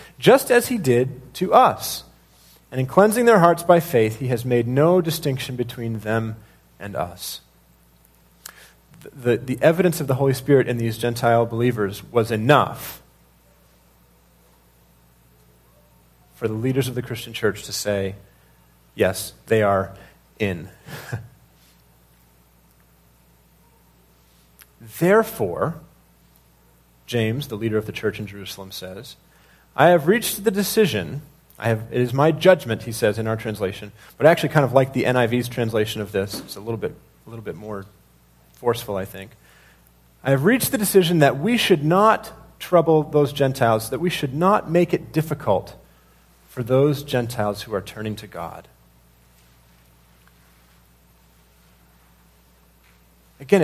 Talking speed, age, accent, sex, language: 135 wpm, 40-59, American, male, English